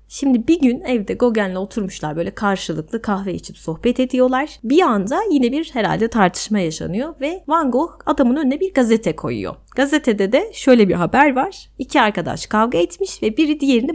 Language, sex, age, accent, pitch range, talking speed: Turkish, female, 30-49, native, 175-255 Hz, 170 wpm